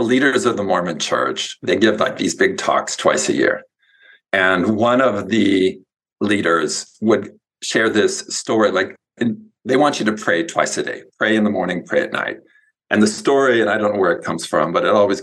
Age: 50-69